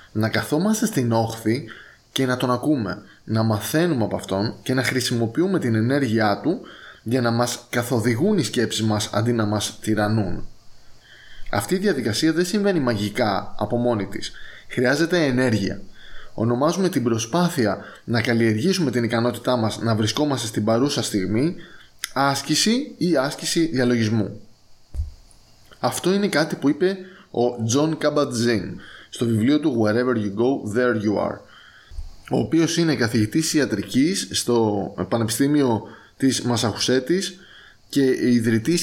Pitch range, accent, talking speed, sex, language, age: 110-150 Hz, native, 130 wpm, male, Greek, 20-39